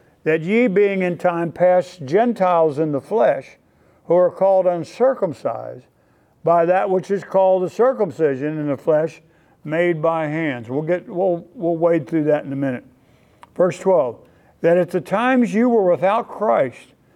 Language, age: English, 60-79